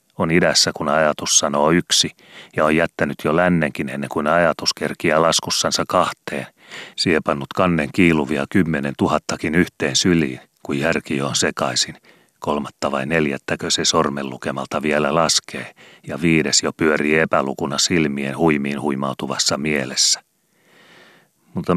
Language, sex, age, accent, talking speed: Finnish, male, 30-49, native, 125 wpm